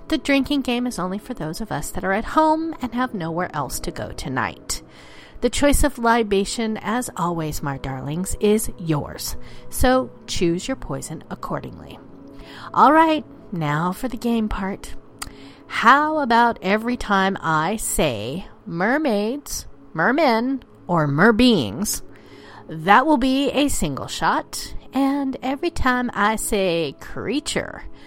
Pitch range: 190-280 Hz